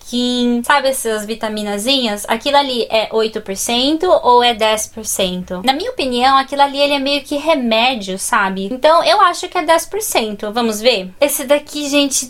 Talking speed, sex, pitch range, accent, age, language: 155 wpm, female, 225-290 Hz, Brazilian, 20-39, Portuguese